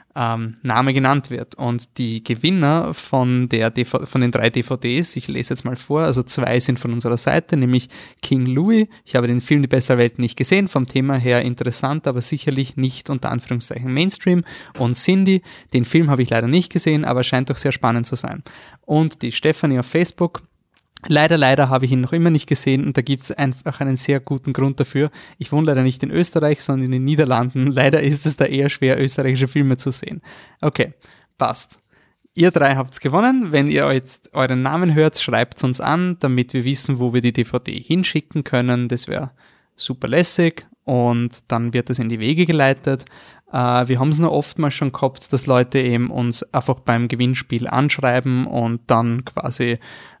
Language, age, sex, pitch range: German, 20-39, male, 125-150 Hz